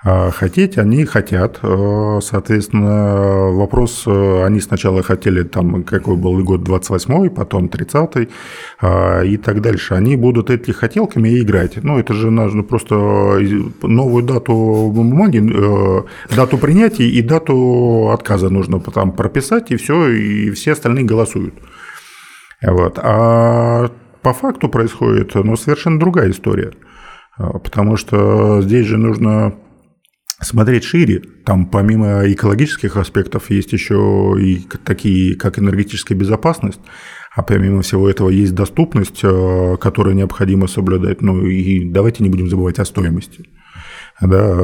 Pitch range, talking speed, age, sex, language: 95-115 Hz, 125 wpm, 50-69, male, Russian